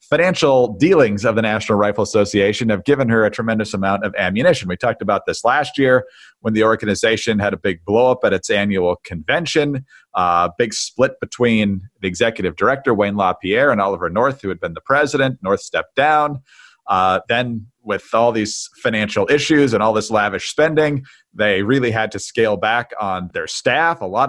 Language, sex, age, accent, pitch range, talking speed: English, male, 40-59, American, 105-140 Hz, 190 wpm